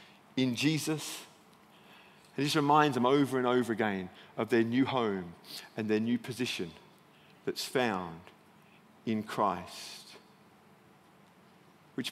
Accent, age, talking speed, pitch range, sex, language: British, 40-59, 115 wpm, 135-185 Hz, male, English